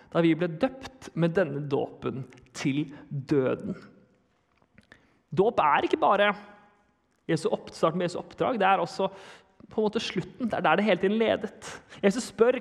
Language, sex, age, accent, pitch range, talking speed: English, male, 30-49, Swedish, 170-220 Hz, 155 wpm